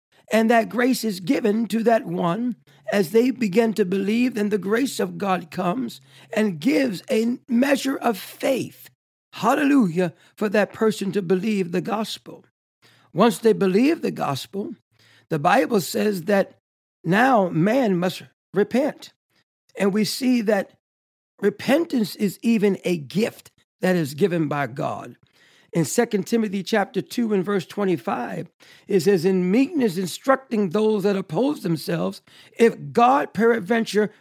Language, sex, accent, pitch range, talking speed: English, male, American, 195-240 Hz, 140 wpm